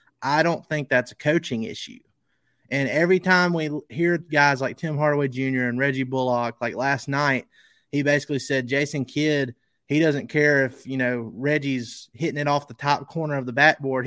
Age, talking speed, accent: 30-49, 190 wpm, American